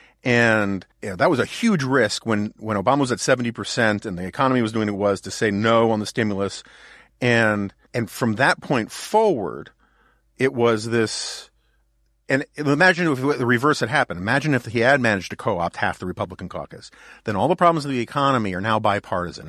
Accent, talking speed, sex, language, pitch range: American, 195 wpm, male, English, 100-135 Hz